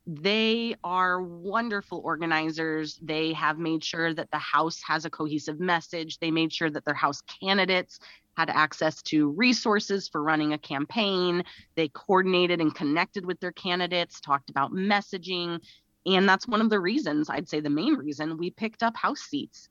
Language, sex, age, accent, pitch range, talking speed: English, female, 30-49, American, 150-195 Hz, 170 wpm